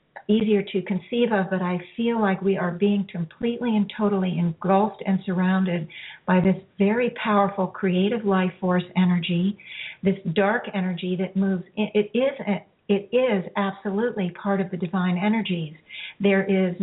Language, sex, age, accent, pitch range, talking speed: English, female, 50-69, American, 180-210 Hz, 150 wpm